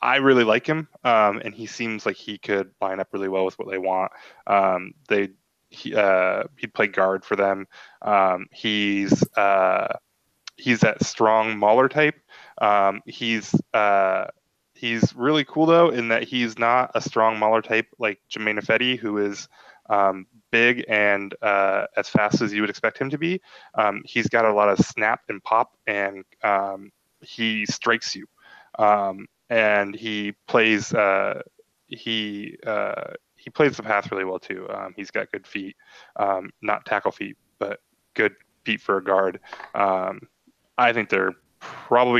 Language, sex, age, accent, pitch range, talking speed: English, male, 10-29, American, 95-110 Hz, 165 wpm